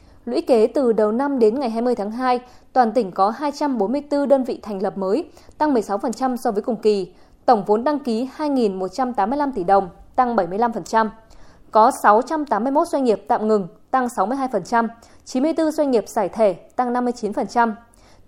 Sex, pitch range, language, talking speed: female, 210-270 Hz, Vietnamese, 160 wpm